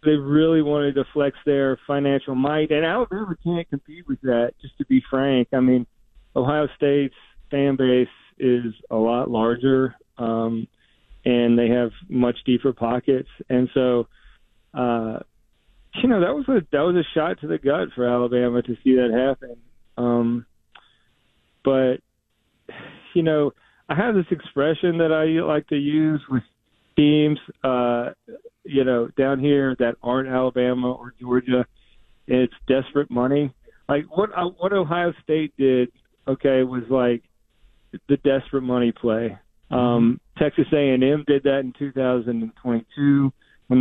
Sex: male